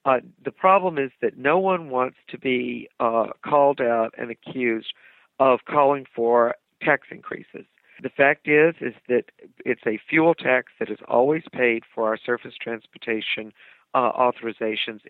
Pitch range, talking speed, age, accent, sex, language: 115-145 Hz, 155 wpm, 50-69, American, male, English